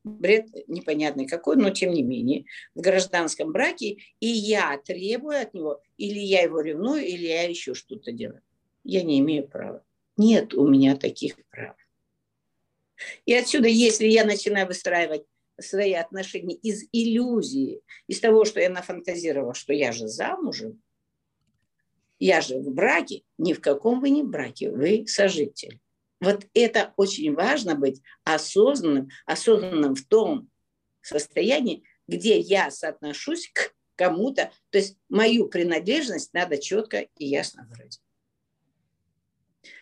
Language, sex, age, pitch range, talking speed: Russian, female, 50-69, 165-230 Hz, 135 wpm